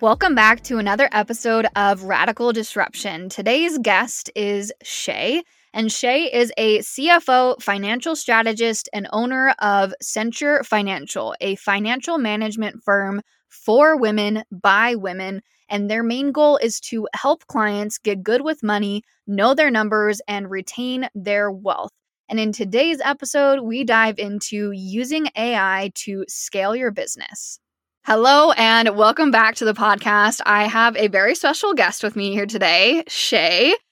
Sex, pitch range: female, 205-245 Hz